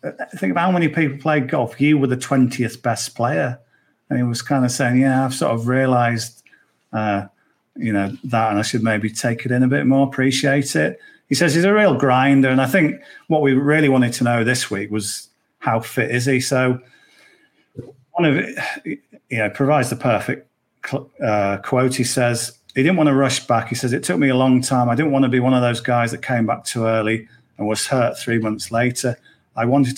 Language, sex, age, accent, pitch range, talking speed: English, male, 40-59, British, 115-145 Hz, 220 wpm